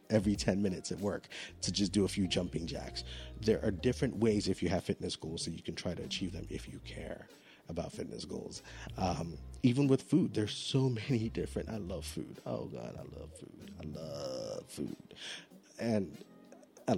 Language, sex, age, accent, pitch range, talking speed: English, male, 30-49, American, 85-105 Hz, 195 wpm